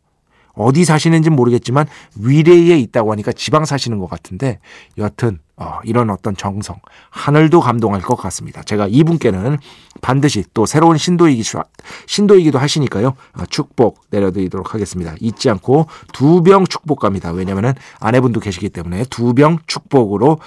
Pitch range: 105-150 Hz